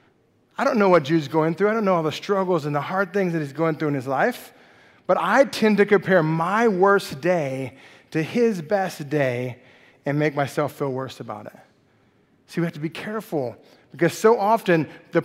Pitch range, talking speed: 160-215 Hz, 210 wpm